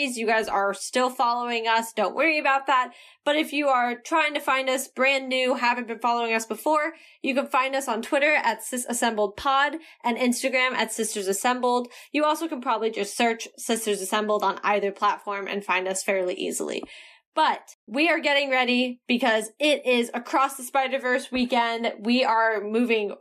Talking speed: 185 wpm